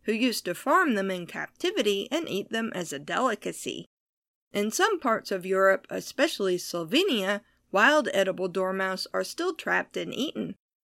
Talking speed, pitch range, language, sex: 155 wpm, 190-270 Hz, English, female